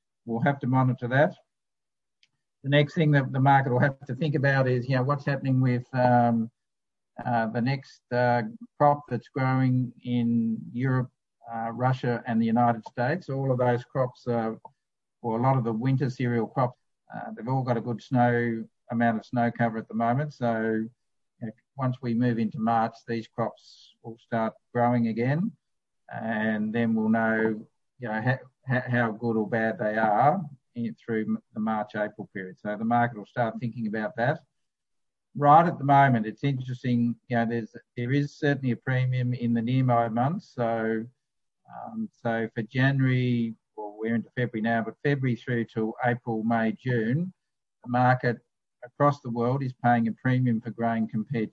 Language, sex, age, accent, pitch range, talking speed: English, male, 50-69, Australian, 115-130 Hz, 175 wpm